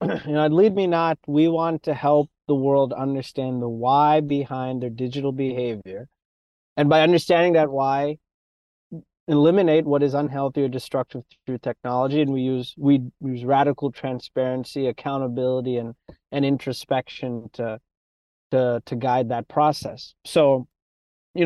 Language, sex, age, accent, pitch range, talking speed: English, male, 30-49, American, 125-150 Hz, 145 wpm